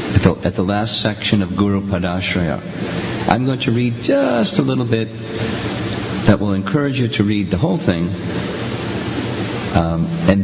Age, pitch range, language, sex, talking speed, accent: 50-69, 90-110 Hz, English, male, 150 wpm, American